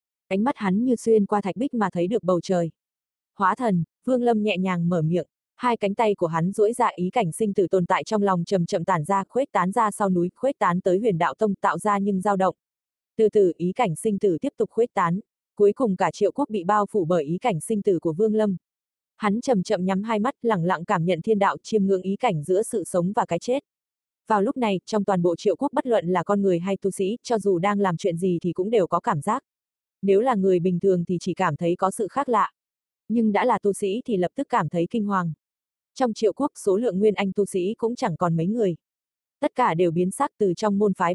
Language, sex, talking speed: Vietnamese, female, 260 wpm